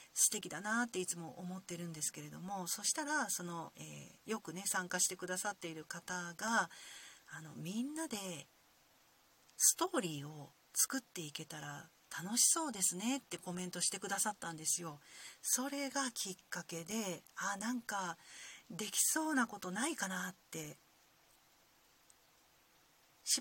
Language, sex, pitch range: Japanese, female, 175-235 Hz